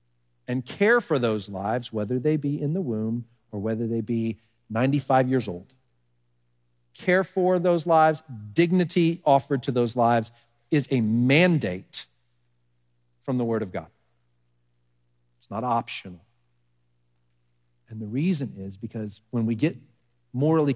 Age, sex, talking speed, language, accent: 40-59, male, 135 wpm, English, American